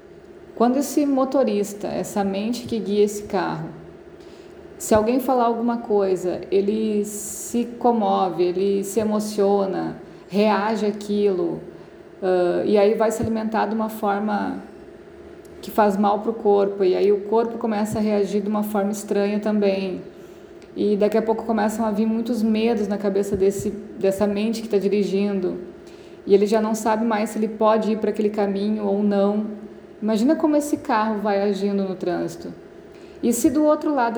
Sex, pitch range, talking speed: female, 200-245 Hz, 160 wpm